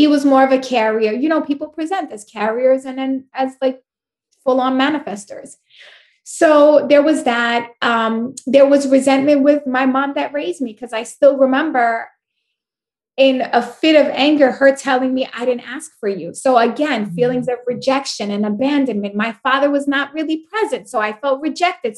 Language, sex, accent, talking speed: English, female, American, 185 wpm